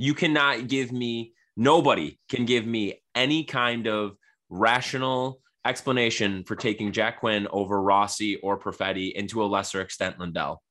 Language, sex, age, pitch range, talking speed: English, male, 20-39, 100-130 Hz, 145 wpm